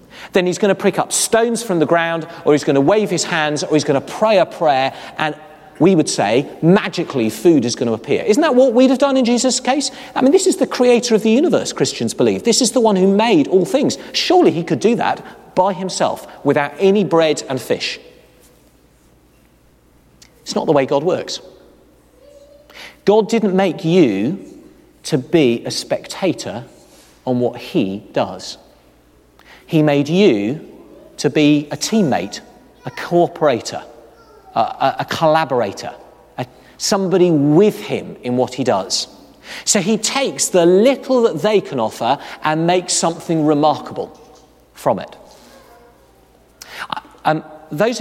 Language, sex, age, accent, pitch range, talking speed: English, male, 40-59, British, 150-220 Hz, 160 wpm